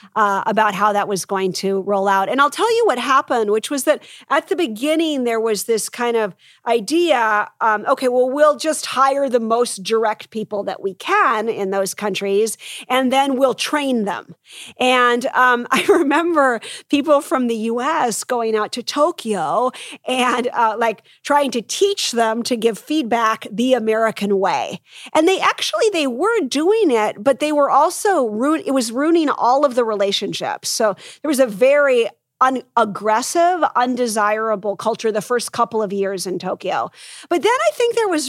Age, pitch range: 40-59, 215-290 Hz